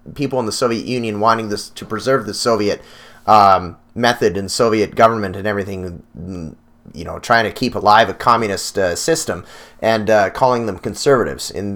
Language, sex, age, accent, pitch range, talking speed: English, male, 30-49, American, 105-140 Hz, 175 wpm